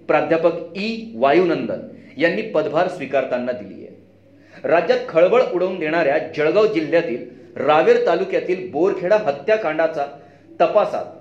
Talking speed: 75 wpm